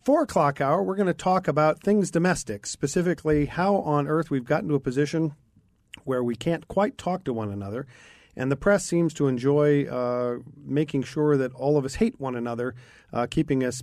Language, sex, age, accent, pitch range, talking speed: English, male, 40-59, American, 130-160 Hz, 200 wpm